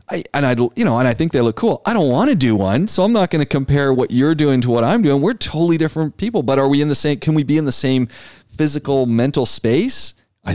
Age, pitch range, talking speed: 40-59, 105-155 Hz, 280 wpm